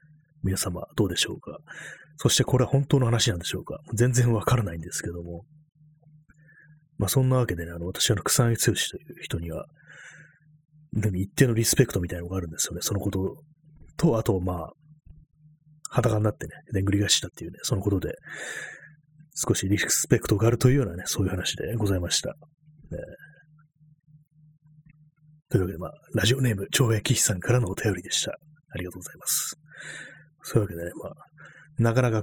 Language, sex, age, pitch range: Japanese, male, 30-49, 100-150 Hz